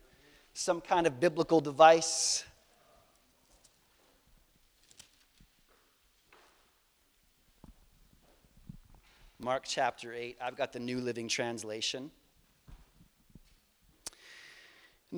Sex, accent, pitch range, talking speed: male, American, 135-170 Hz, 55 wpm